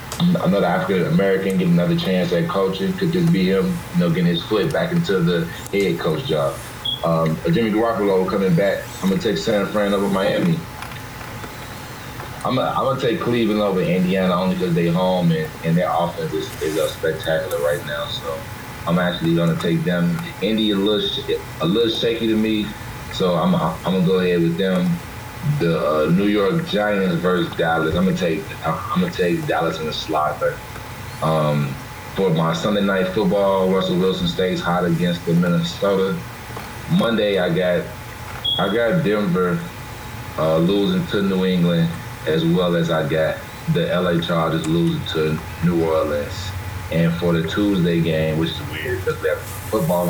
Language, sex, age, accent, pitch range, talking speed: English, male, 30-49, American, 85-120 Hz, 170 wpm